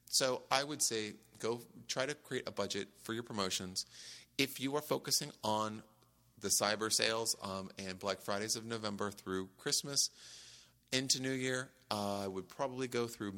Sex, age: male, 30-49